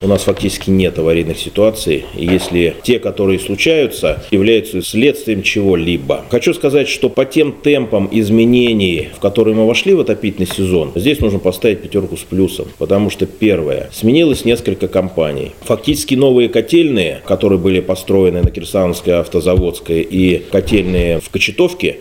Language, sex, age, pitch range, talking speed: Russian, male, 30-49, 95-125 Hz, 140 wpm